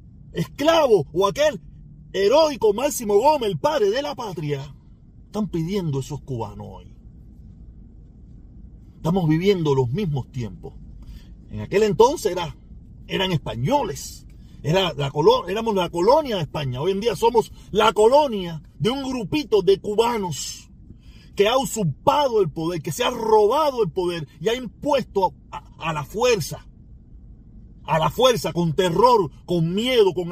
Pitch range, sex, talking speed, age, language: 155-235 Hz, male, 135 wpm, 40-59, Spanish